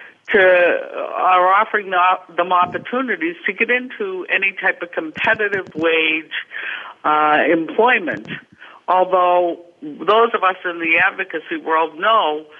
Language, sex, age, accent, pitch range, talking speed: English, female, 60-79, American, 155-245 Hz, 120 wpm